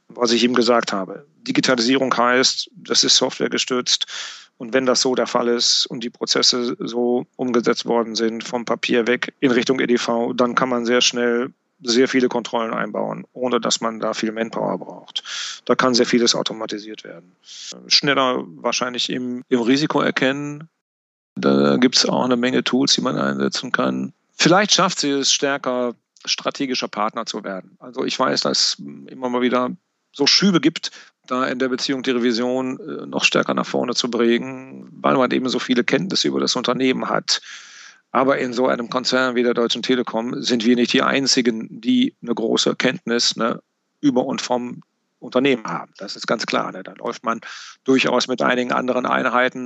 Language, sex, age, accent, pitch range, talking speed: German, male, 40-59, German, 115-130 Hz, 175 wpm